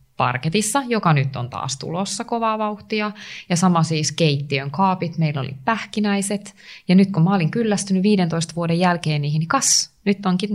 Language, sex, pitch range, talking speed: Finnish, female, 145-200 Hz, 170 wpm